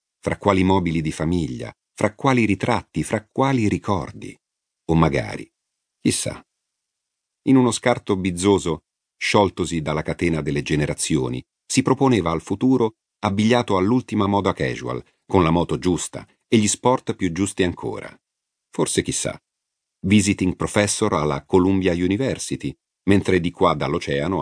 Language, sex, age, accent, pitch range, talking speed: Italian, male, 50-69, native, 85-110 Hz, 130 wpm